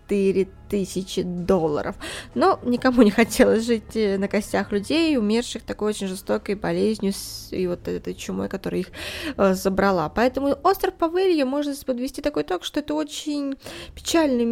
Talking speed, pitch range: 140 wpm, 195-265 Hz